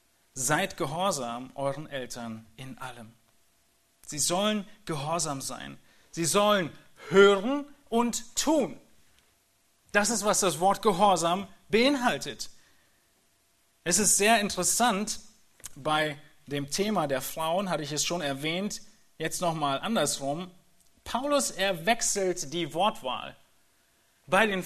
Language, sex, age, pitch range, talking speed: German, male, 40-59, 130-195 Hz, 110 wpm